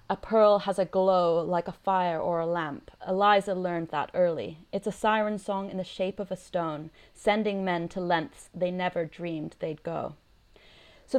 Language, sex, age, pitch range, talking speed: English, female, 20-39, 175-200 Hz, 190 wpm